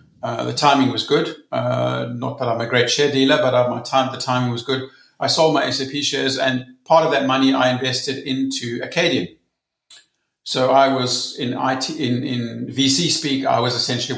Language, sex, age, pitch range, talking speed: German, male, 50-69, 120-145 Hz, 195 wpm